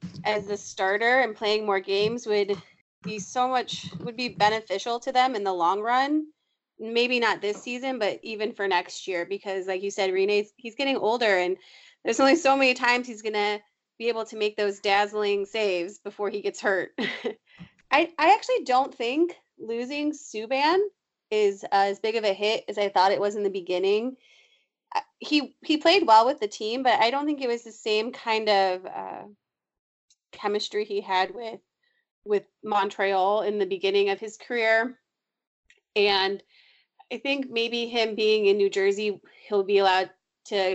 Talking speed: 180 wpm